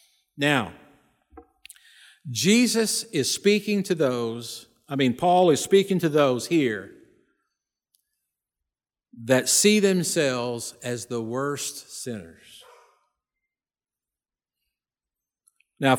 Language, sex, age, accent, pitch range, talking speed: English, male, 50-69, American, 135-195 Hz, 85 wpm